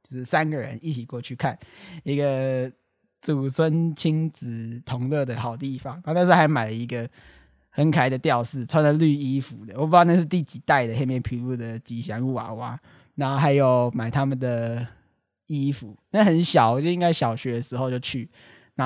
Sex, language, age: male, Chinese, 20-39